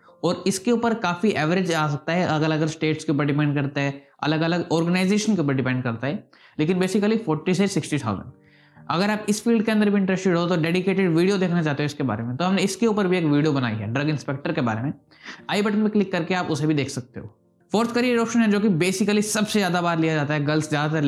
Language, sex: Hindi, male